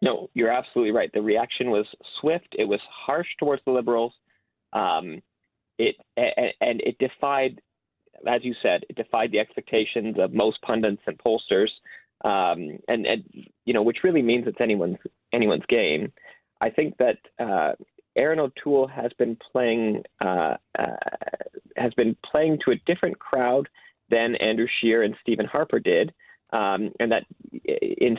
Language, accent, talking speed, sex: English, American, 160 wpm, male